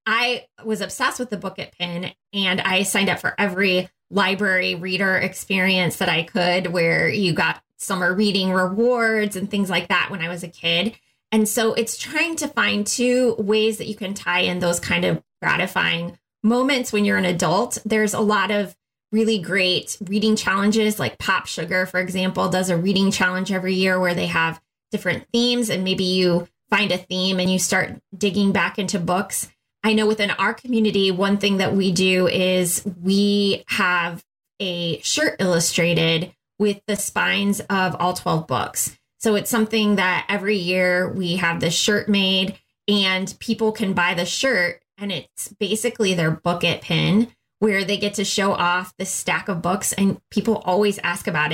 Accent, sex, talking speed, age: American, female, 180 wpm, 20-39